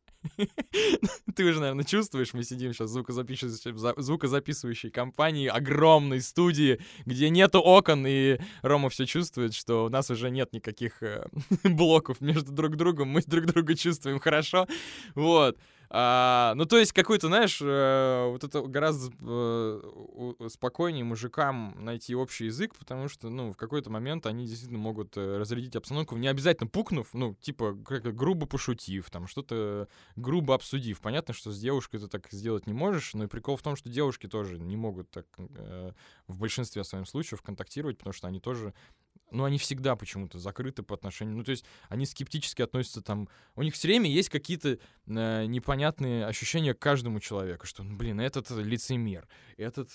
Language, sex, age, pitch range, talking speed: Russian, male, 20-39, 105-145 Hz, 160 wpm